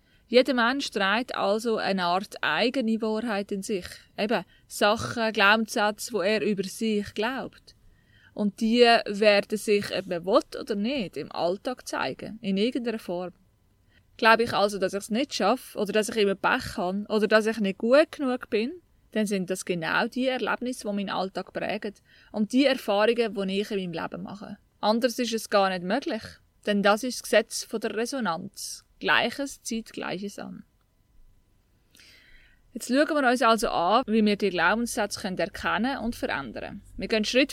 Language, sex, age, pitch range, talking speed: German, female, 20-39, 195-235 Hz, 175 wpm